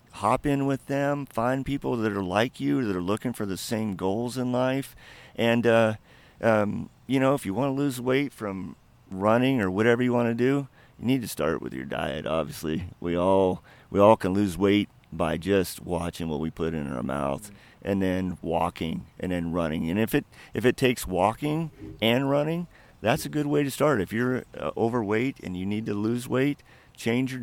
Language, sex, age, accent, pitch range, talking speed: English, male, 50-69, American, 95-125 Hz, 210 wpm